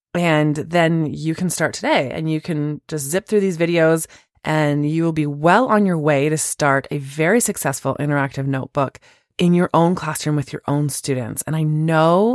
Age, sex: 20-39, female